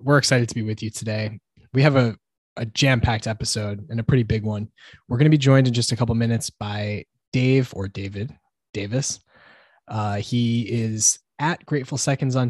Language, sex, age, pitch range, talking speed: English, male, 20-39, 110-130 Hz, 190 wpm